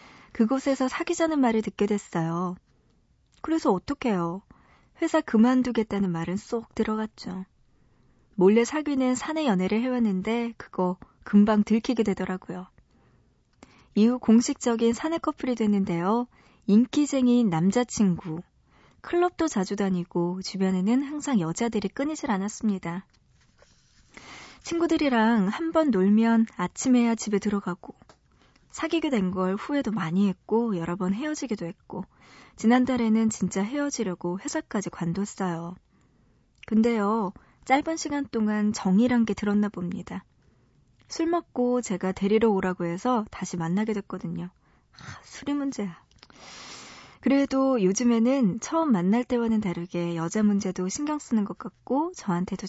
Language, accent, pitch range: Korean, native, 185-250 Hz